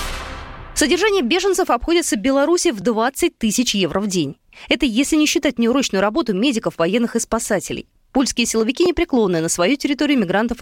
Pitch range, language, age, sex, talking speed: 195-290 Hz, Russian, 20-39, female, 155 wpm